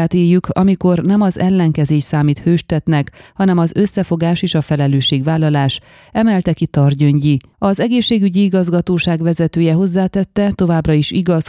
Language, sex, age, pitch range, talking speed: Hungarian, female, 30-49, 150-185 Hz, 125 wpm